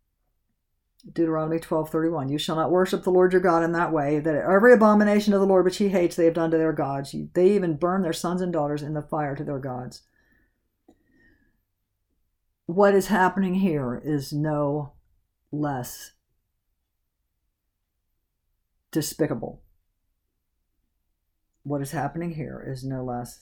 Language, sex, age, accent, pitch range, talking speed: English, female, 50-69, American, 135-185 Hz, 145 wpm